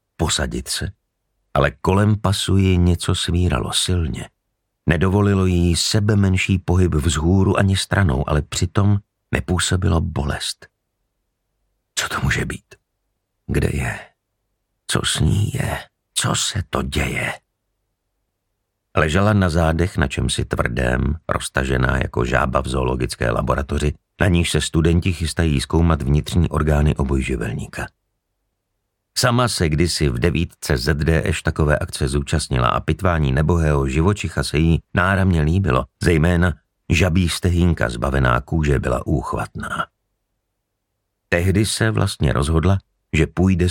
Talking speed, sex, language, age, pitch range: 120 wpm, male, Slovak, 50-69, 75-95 Hz